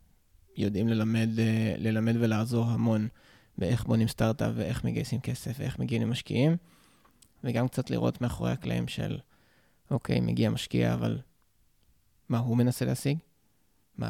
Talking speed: 125 wpm